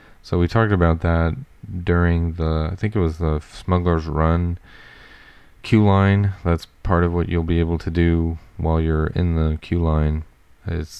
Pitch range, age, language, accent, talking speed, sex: 80-90 Hz, 30-49, English, American, 175 wpm, male